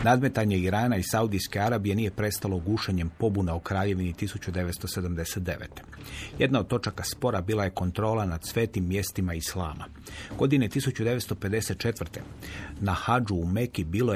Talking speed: 125 wpm